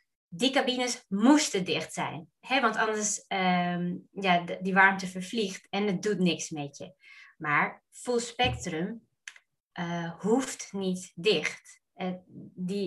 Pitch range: 180-215 Hz